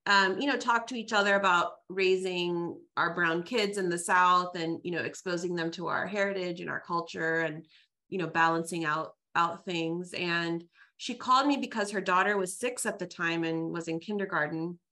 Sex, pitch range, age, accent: female, 165-200 Hz, 30-49, American